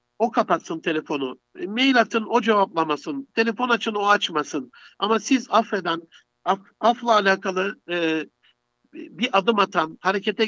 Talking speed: 130 wpm